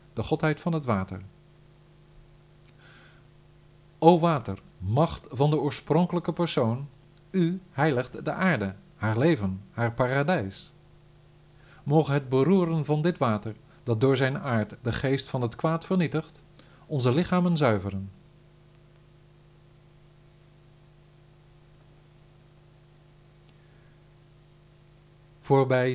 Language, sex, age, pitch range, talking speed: Dutch, male, 50-69, 120-155 Hz, 90 wpm